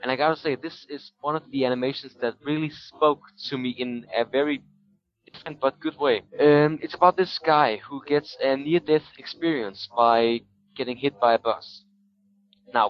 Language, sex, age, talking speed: English, male, 20-39, 180 wpm